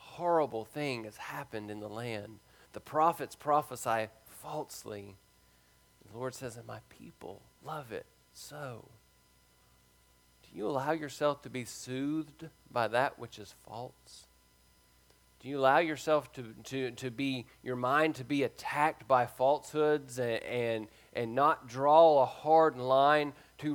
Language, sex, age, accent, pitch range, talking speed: English, male, 40-59, American, 100-155 Hz, 140 wpm